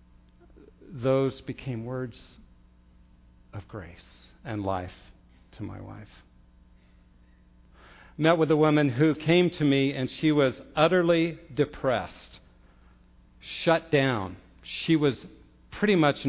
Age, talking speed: 50-69, 105 wpm